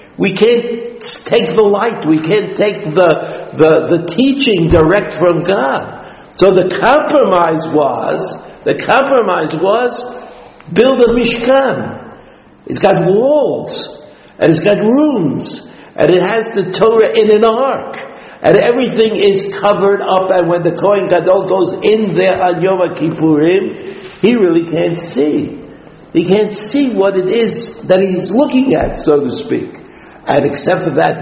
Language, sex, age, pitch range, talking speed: English, male, 60-79, 165-235 Hz, 150 wpm